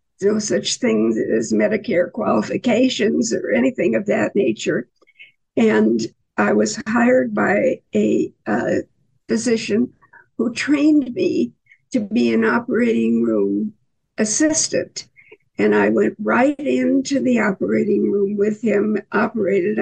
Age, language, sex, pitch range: 60-79, English, female, 170-255 Hz